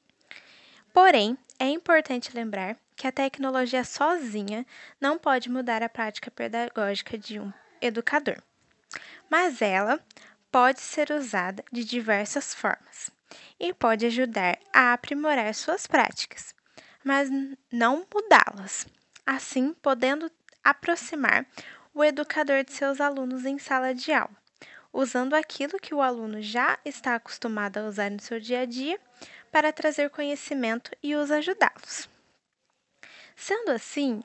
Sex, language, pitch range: female, Portuguese, 235-295 Hz